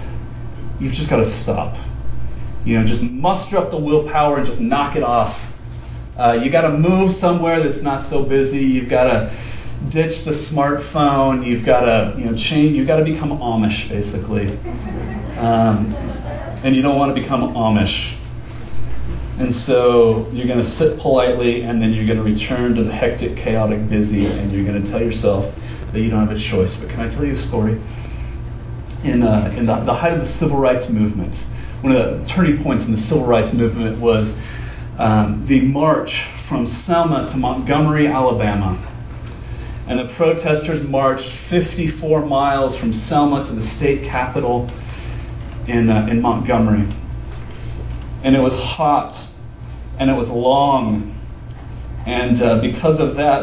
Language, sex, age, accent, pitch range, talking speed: English, male, 30-49, American, 110-140 Hz, 165 wpm